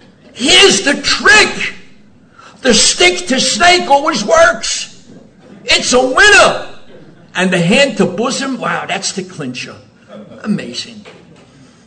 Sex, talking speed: male, 110 wpm